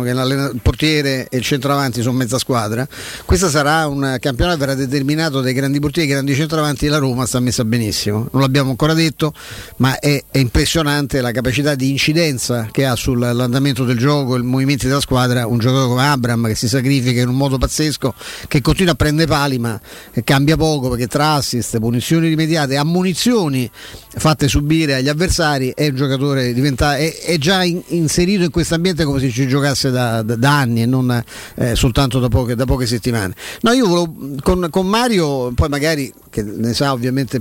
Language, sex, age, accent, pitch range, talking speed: Italian, male, 50-69, native, 125-155 Hz, 190 wpm